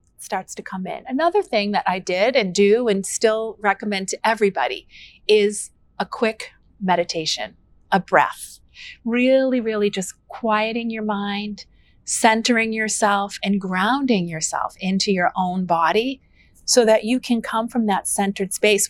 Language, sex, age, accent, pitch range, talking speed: English, female, 40-59, American, 190-240 Hz, 145 wpm